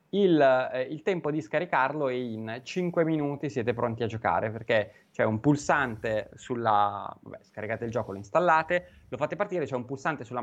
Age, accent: 20-39, native